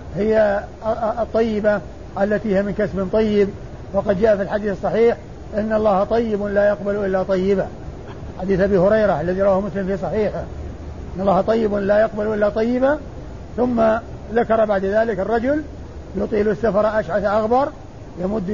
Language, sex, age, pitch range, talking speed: Arabic, male, 50-69, 200-230 Hz, 140 wpm